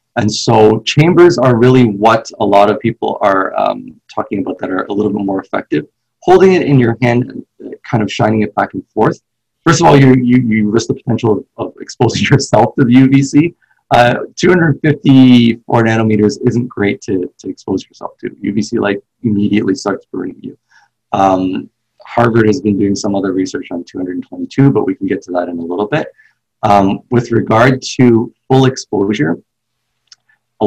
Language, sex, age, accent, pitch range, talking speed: English, male, 30-49, American, 105-130 Hz, 185 wpm